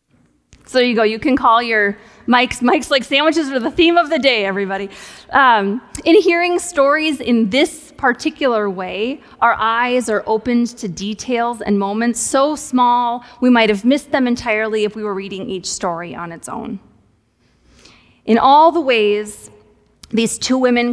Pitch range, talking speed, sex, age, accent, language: 205-245 Hz, 165 wpm, female, 30-49, American, English